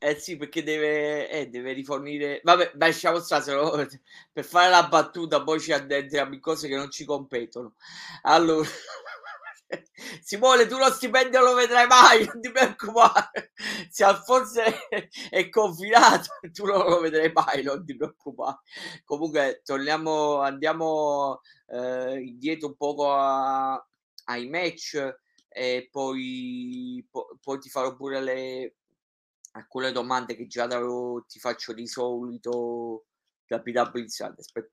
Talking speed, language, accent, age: 135 wpm, Italian, native, 30-49